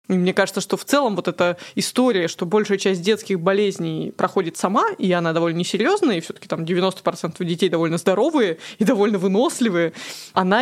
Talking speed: 170 wpm